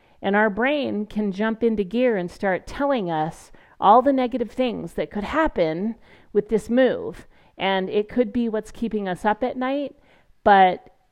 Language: English